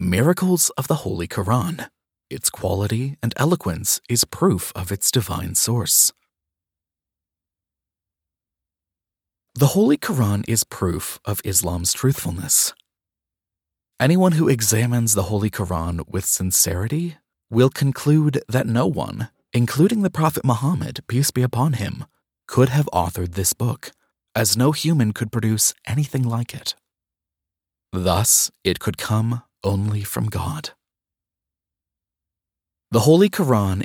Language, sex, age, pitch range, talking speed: English, male, 30-49, 90-130 Hz, 120 wpm